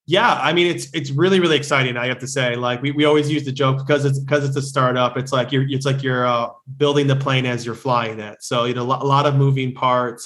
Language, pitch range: English, 120-135 Hz